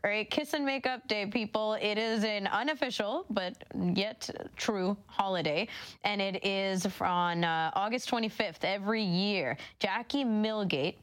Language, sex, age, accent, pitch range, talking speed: English, female, 20-39, American, 165-215 Hz, 140 wpm